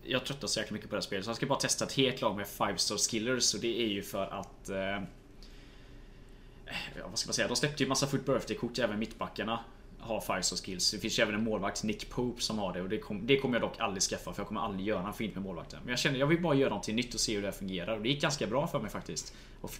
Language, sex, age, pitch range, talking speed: Swedish, male, 20-39, 105-130 Hz, 300 wpm